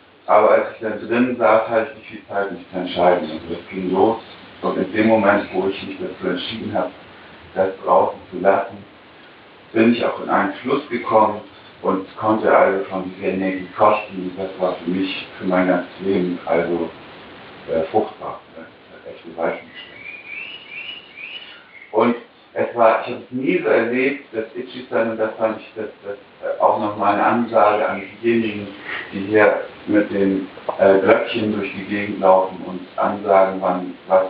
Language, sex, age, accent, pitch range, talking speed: German, male, 60-79, German, 95-110 Hz, 170 wpm